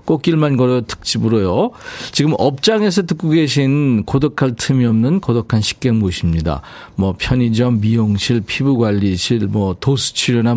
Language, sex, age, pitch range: Korean, male, 40-59, 110-155 Hz